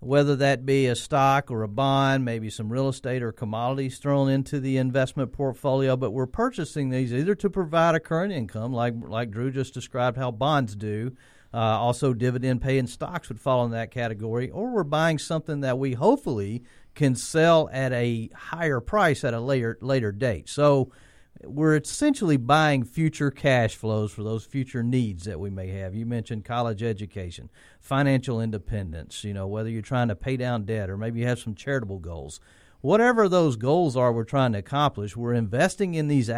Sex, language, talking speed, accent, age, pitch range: male, English, 190 wpm, American, 40-59, 115-145 Hz